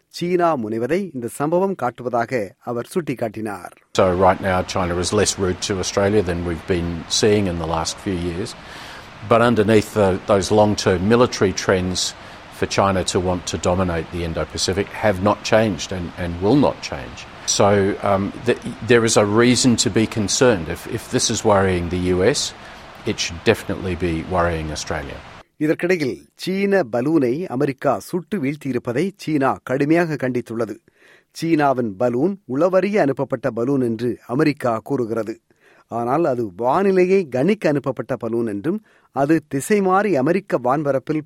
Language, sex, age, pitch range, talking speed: Tamil, male, 40-59, 100-150 Hz, 60 wpm